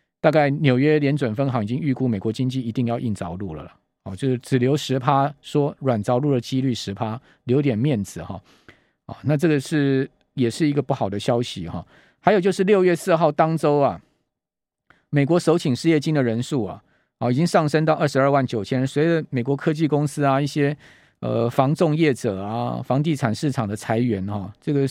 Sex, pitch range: male, 120-155 Hz